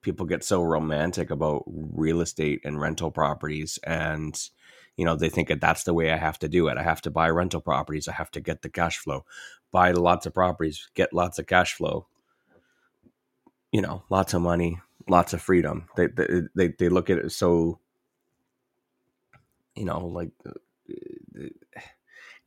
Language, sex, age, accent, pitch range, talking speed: English, male, 30-49, American, 80-90 Hz, 175 wpm